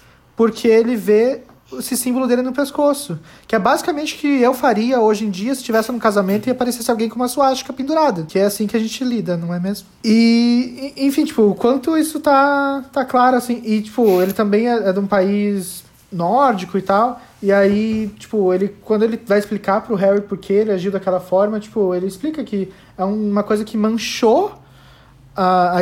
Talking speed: 205 wpm